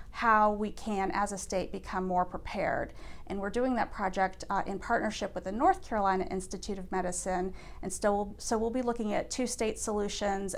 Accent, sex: American, female